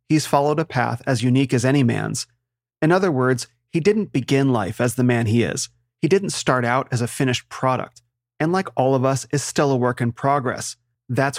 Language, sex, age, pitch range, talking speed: English, male, 30-49, 120-145 Hz, 215 wpm